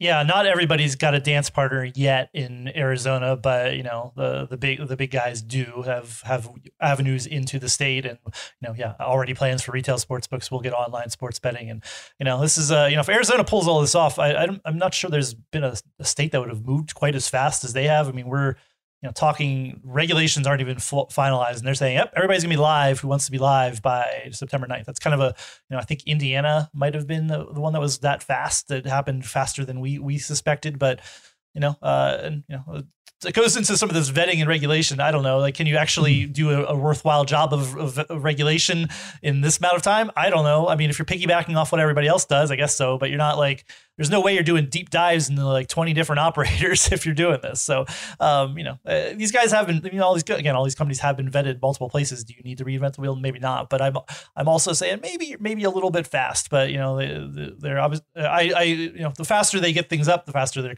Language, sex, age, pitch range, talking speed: English, male, 30-49, 130-155 Hz, 260 wpm